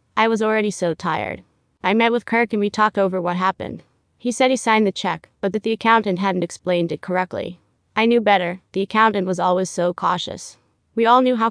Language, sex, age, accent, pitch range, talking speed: English, female, 20-39, American, 180-220 Hz, 220 wpm